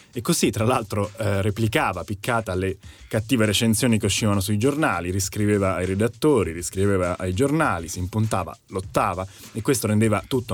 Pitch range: 100-120 Hz